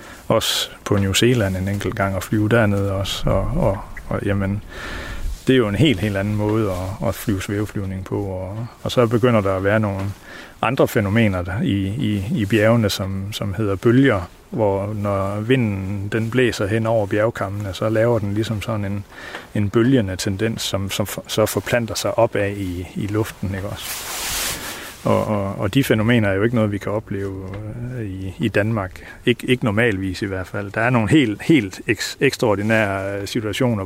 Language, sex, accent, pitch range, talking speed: Danish, male, native, 100-115 Hz, 185 wpm